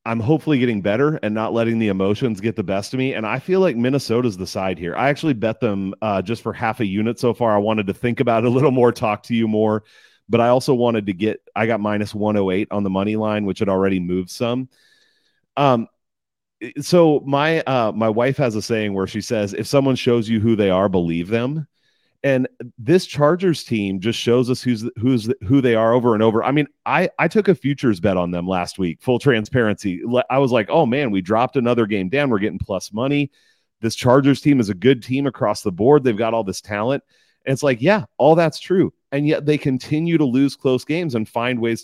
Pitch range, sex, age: 105-140 Hz, male, 30-49